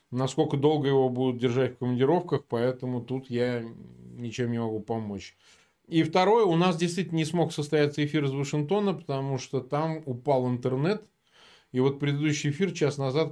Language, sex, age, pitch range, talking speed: Russian, male, 20-39, 125-165 Hz, 160 wpm